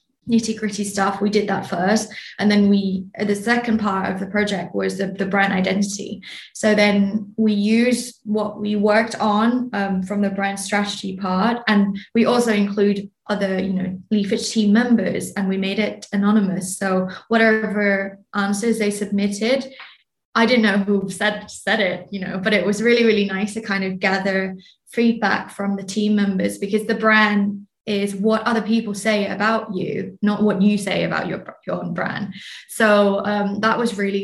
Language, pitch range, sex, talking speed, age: English, 195-220 Hz, female, 180 wpm, 20-39